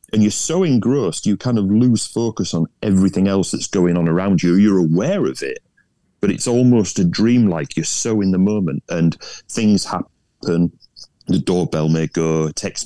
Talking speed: 180 wpm